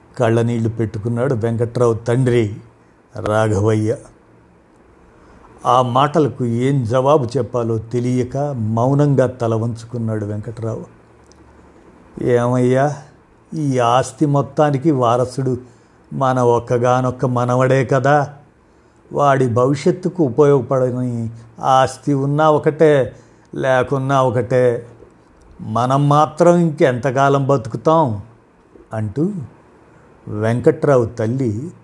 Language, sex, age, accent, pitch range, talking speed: Telugu, male, 50-69, native, 115-140 Hz, 70 wpm